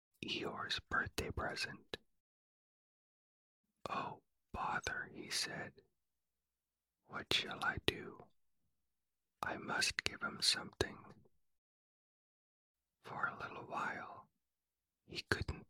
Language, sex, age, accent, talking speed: English, male, 40-59, American, 85 wpm